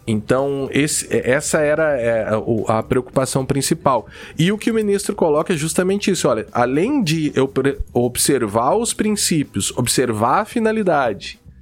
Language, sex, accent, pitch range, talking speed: Portuguese, male, Brazilian, 110-155 Hz, 145 wpm